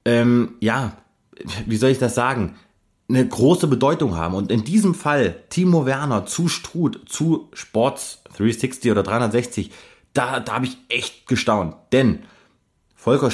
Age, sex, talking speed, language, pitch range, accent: 30-49, male, 145 wpm, German, 110-135 Hz, German